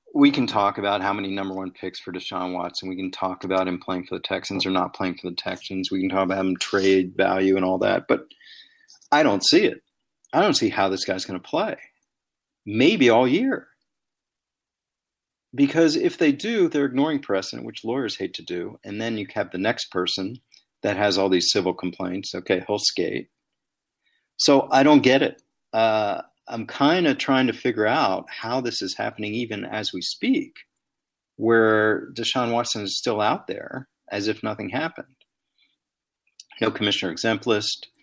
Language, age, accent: English, 40-59, American